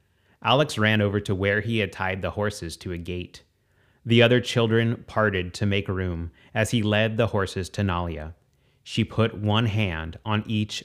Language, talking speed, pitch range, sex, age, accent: English, 185 wpm, 90-115 Hz, male, 30-49, American